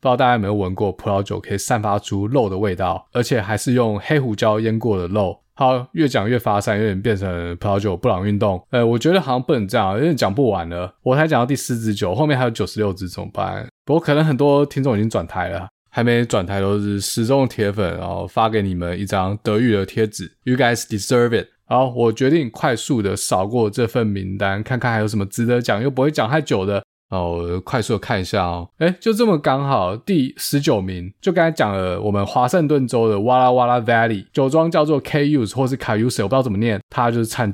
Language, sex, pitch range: Chinese, male, 100-130 Hz